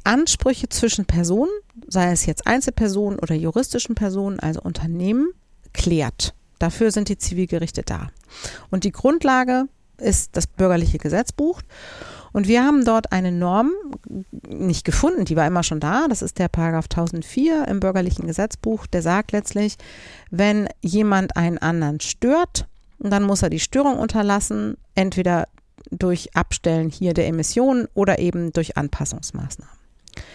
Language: German